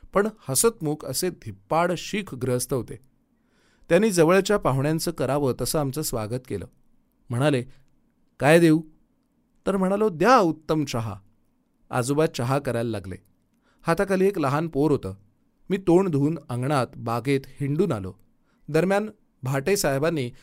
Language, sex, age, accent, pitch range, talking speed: Marathi, male, 30-49, native, 125-170 Hz, 85 wpm